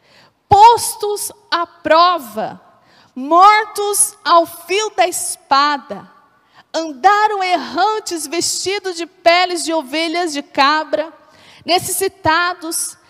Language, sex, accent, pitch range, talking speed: Portuguese, female, Brazilian, 240-345 Hz, 80 wpm